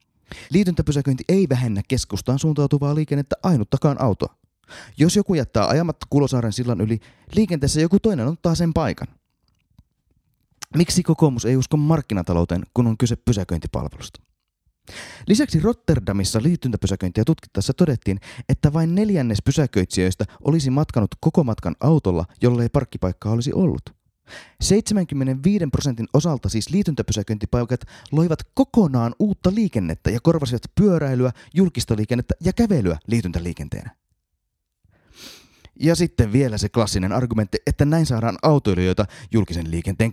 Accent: native